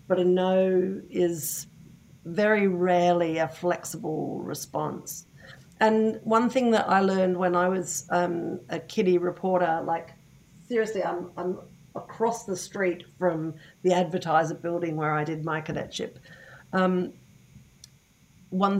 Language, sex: English, female